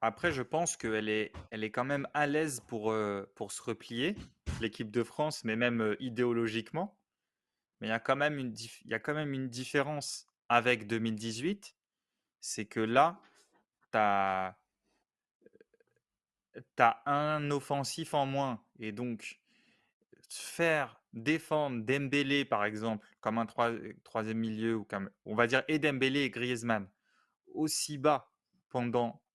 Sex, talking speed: male, 140 wpm